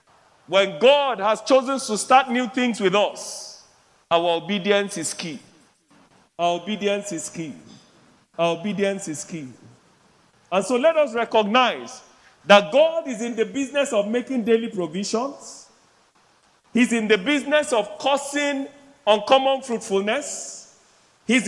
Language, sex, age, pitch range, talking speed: English, male, 40-59, 190-245 Hz, 130 wpm